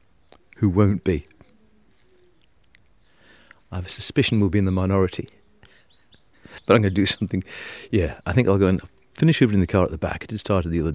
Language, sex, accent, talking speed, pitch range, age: English, male, British, 210 wpm, 85-100 Hz, 40-59